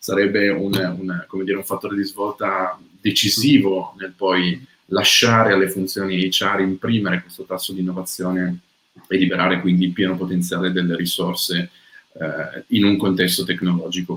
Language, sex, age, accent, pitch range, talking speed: Italian, male, 30-49, native, 90-110 Hz, 145 wpm